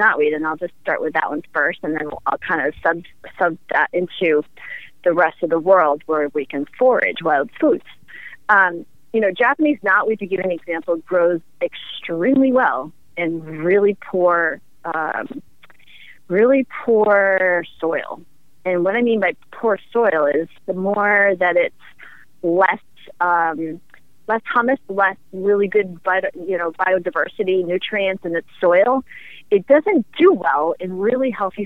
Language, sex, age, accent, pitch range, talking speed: English, female, 30-49, American, 170-235 Hz, 155 wpm